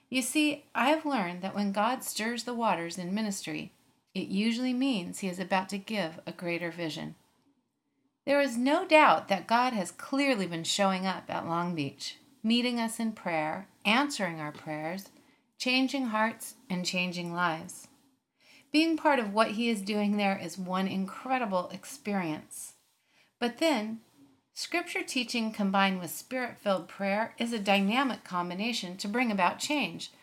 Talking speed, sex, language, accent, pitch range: 155 wpm, female, English, American, 190-265 Hz